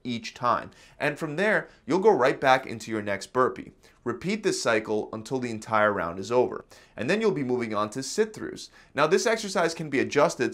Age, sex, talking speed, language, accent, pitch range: 30-49, male, 205 wpm, English, American, 115-175 Hz